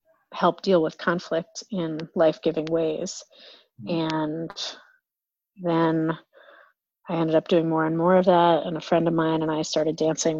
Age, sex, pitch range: 30-49, female, 160-185 Hz